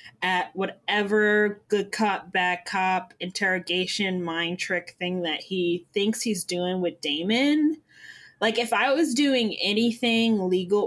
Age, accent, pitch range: 10-29, American, 180-235 Hz